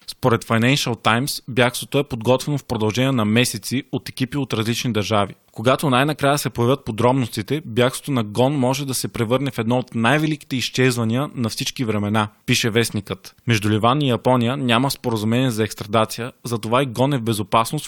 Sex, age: male, 20-39